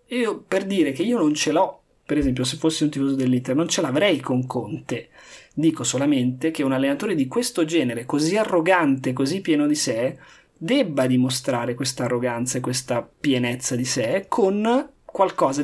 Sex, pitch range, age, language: male, 130-165 Hz, 20-39, Italian